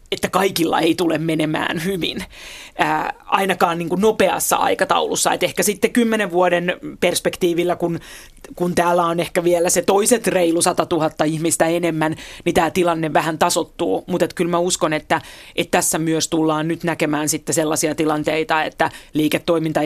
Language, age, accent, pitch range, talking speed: Finnish, 30-49, native, 165-185 Hz, 155 wpm